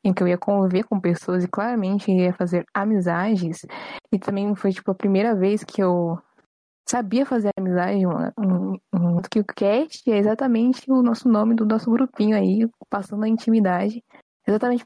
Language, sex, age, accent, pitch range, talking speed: Portuguese, female, 10-29, Brazilian, 185-230 Hz, 175 wpm